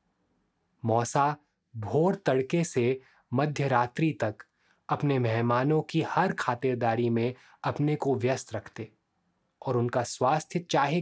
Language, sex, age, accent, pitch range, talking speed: Hindi, male, 20-39, native, 120-150 Hz, 110 wpm